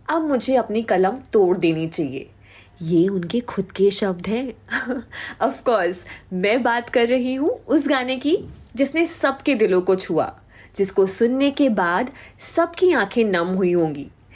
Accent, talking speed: native, 150 wpm